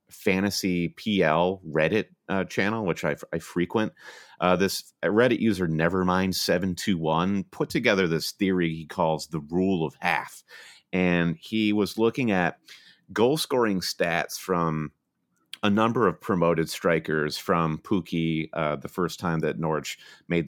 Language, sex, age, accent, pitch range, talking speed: English, male, 30-49, American, 80-95 Hz, 140 wpm